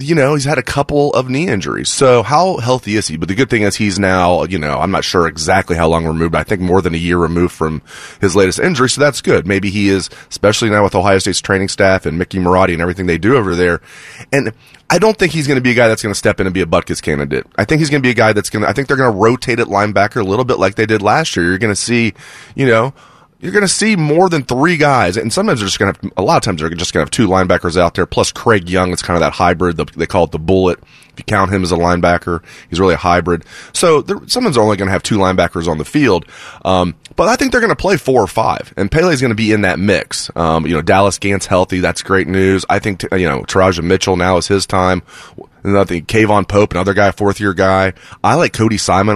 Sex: male